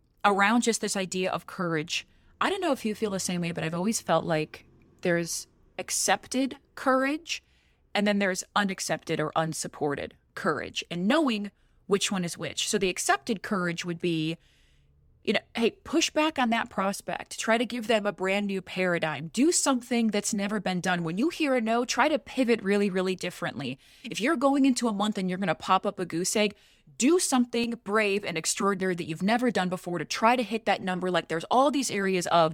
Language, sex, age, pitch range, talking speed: English, female, 20-39, 170-230 Hz, 205 wpm